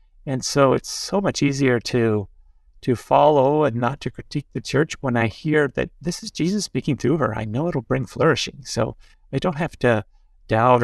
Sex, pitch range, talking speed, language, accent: male, 120-145 Hz, 200 wpm, English, American